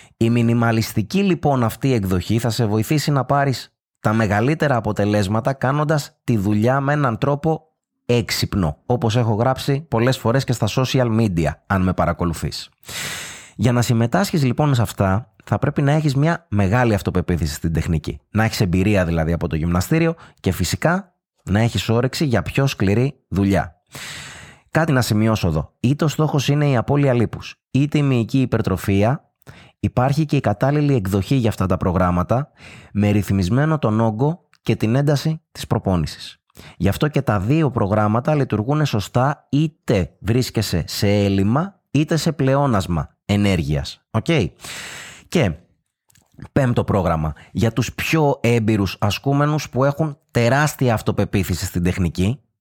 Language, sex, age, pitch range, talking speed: Greek, male, 20-39, 100-140 Hz, 145 wpm